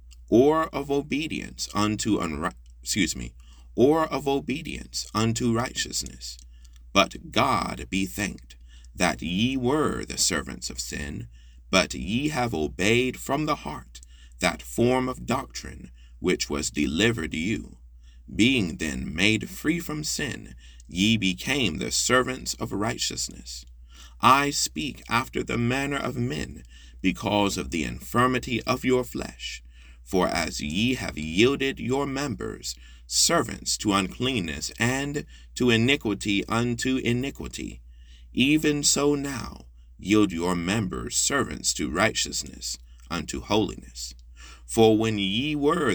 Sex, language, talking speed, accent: male, French, 125 wpm, American